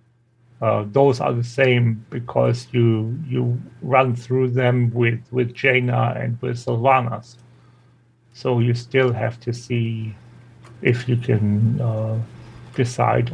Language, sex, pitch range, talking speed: English, male, 120-130 Hz, 125 wpm